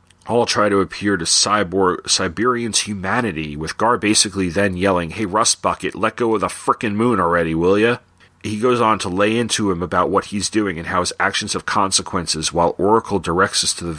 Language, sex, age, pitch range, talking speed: English, male, 40-59, 85-105 Hz, 205 wpm